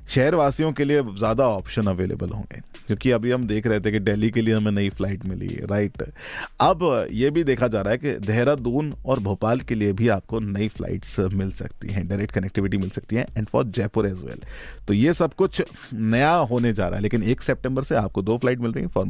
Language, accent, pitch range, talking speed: Hindi, native, 100-125 Hz, 225 wpm